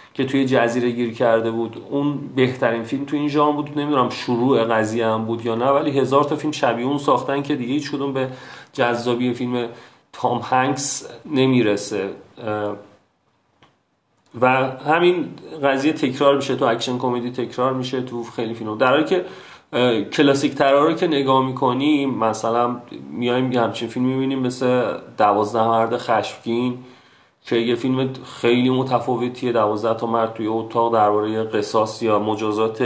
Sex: male